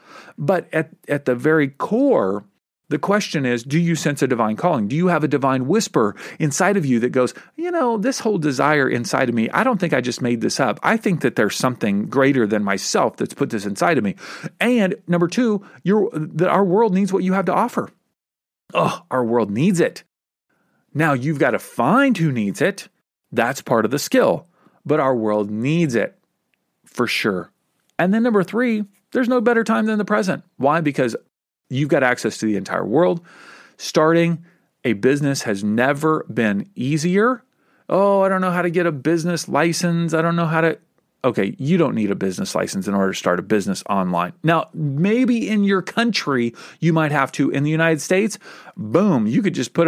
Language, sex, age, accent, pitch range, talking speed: English, male, 40-59, American, 130-190 Hz, 200 wpm